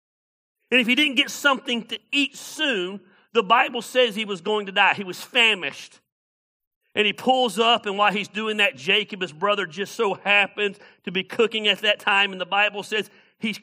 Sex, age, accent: male, 40-59, American